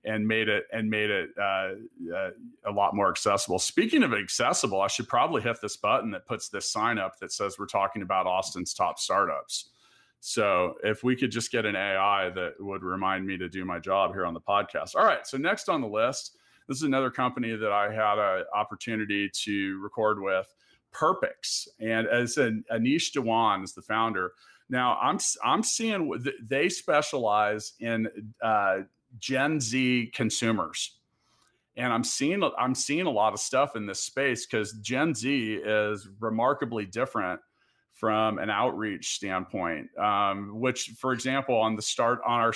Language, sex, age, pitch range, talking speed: English, male, 40-59, 100-120 Hz, 175 wpm